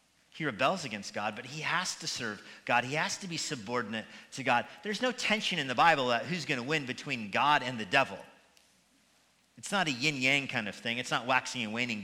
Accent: American